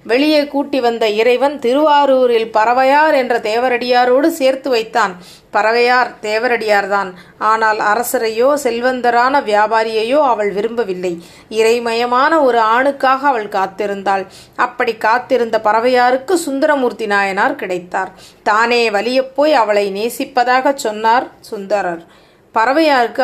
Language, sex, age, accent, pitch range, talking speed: Tamil, female, 30-49, native, 210-260 Hz, 95 wpm